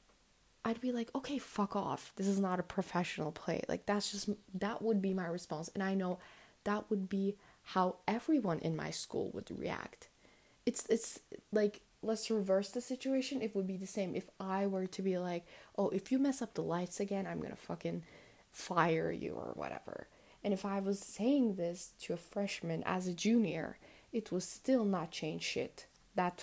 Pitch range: 185-220 Hz